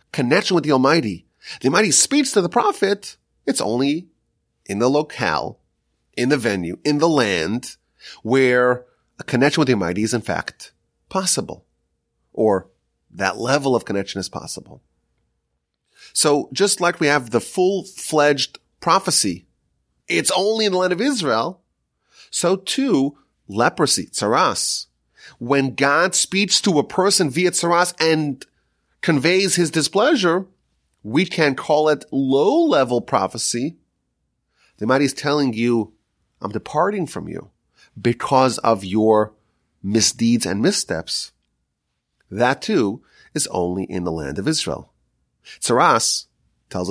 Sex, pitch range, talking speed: male, 105-175 Hz, 130 wpm